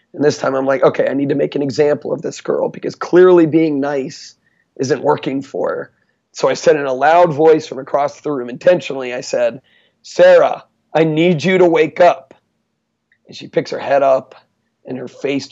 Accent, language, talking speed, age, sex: American, English, 205 wpm, 30-49, male